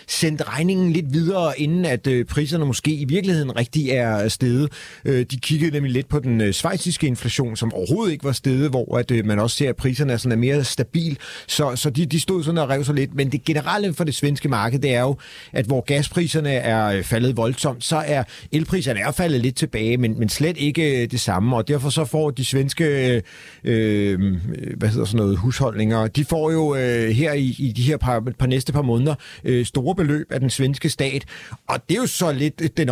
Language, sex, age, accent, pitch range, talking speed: Danish, male, 40-59, native, 120-150 Hz, 215 wpm